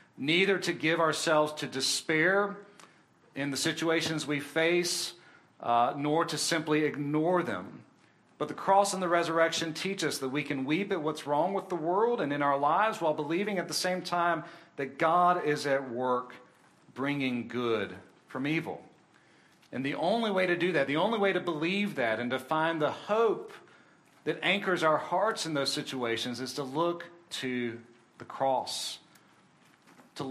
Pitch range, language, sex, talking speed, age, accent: 140-175 Hz, English, male, 170 wpm, 40-59, American